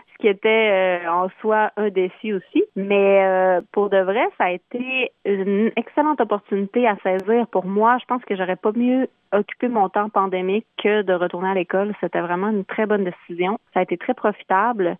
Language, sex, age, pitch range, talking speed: French, female, 30-49, 185-220 Hz, 195 wpm